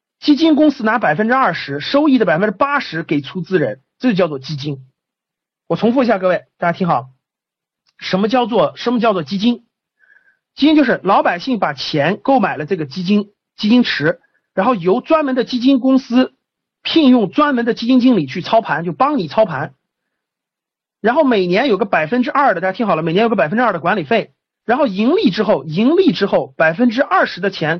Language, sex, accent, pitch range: Chinese, male, native, 175-255 Hz